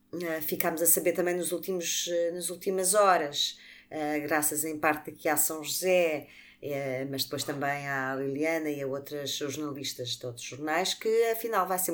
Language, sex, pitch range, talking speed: Portuguese, female, 150-185 Hz, 185 wpm